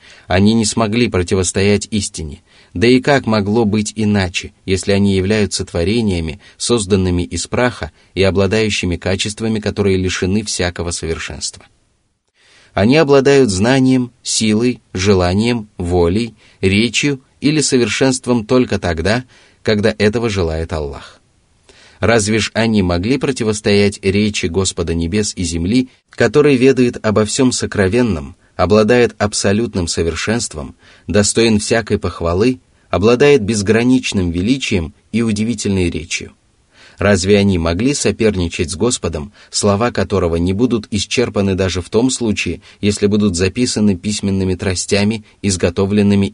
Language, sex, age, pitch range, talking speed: Russian, male, 30-49, 90-115 Hz, 115 wpm